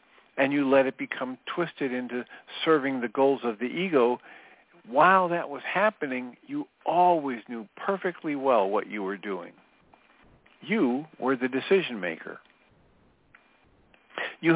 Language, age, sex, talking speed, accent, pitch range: English, 50-69, male, 130 wpm, American, 125-170 Hz